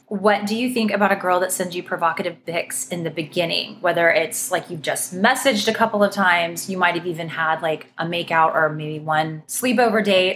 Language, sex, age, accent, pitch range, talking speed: English, female, 20-39, American, 170-210 Hz, 215 wpm